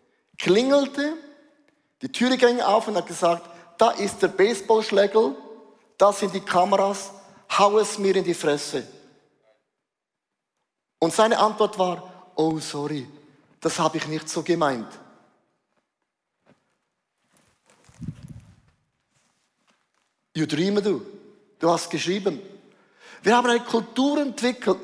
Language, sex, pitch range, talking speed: German, male, 200-260 Hz, 110 wpm